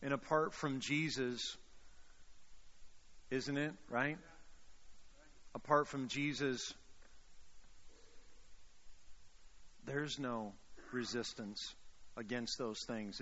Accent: American